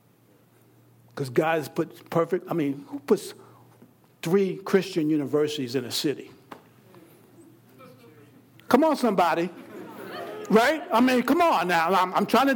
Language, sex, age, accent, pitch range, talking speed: English, male, 60-79, American, 180-280 Hz, 135 wpm